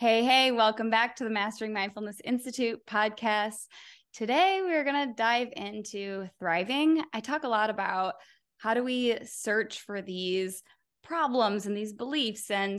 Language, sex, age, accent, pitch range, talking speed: English, female, 20-39, American, 185-230 Hz, 155 wpm